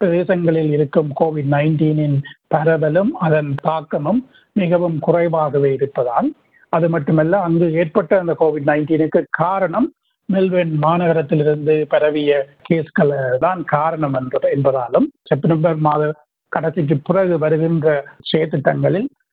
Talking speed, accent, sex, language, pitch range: 95 wpm, native, male, Tamil, 145-165 Hz